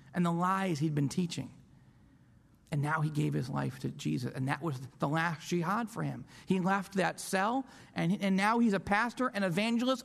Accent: American